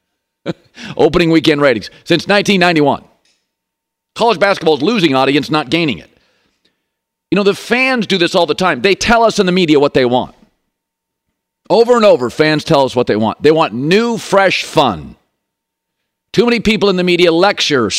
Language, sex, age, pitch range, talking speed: English, male, 50-69, 130-195 Hz, 175 wpm